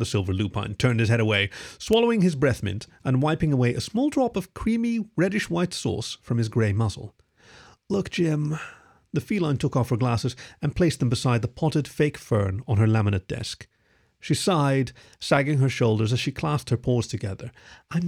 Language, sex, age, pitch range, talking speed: English, male, 40-59, 115-170 Hz, 195 wpm